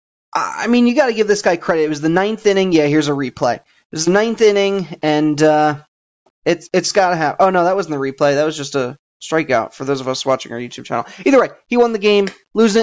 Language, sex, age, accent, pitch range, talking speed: English, male, 30-49, American, 150-195 Hz, 260 wpm